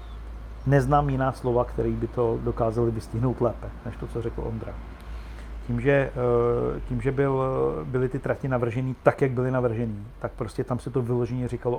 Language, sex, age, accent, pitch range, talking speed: Czech, male, 50-69, native, 115-140 Hz, 165 wpm